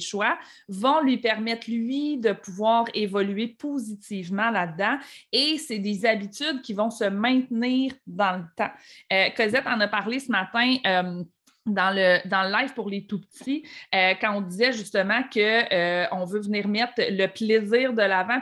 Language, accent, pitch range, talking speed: French, Canadian, 200-250 Hz, 165 wpm